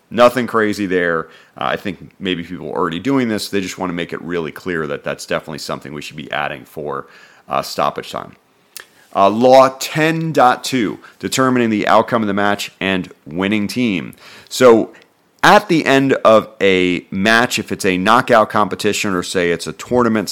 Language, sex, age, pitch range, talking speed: English, male, 40-59, 90-115 Hz, 180 wpm